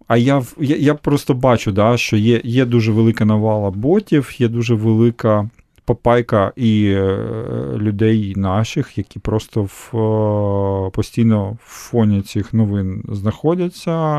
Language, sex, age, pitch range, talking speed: Ukrainian, male, 40-59, 105-120 Hz, 120 wpm